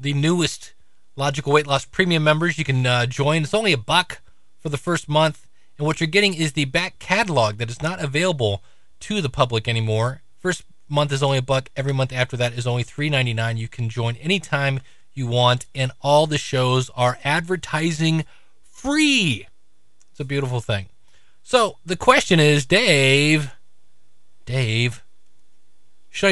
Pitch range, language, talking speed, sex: 115-160 Hz, English, 165 wpm, male